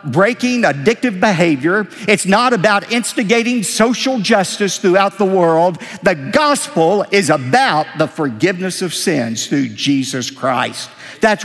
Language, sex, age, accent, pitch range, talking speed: English, male, 50-69, American, 170-245 Hz, 125 wpm